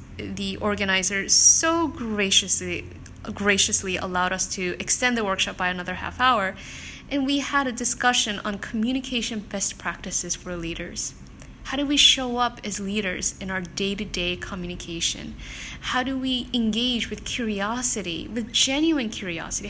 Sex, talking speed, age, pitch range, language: female, 140 wpm, 10-29, 185-250 Hz, English